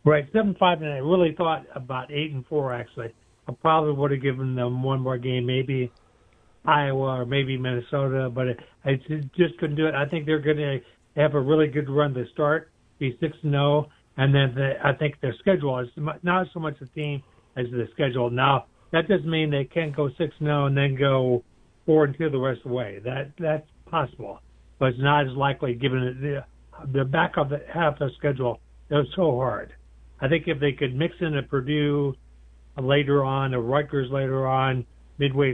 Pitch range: 125-150 Hz